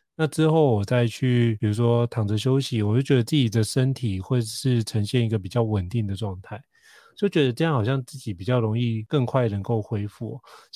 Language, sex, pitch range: Chinese, male, 110-140 Hz